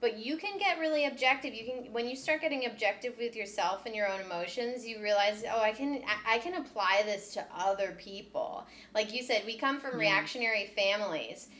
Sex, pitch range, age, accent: female, 195-245 Hz, 20-39, American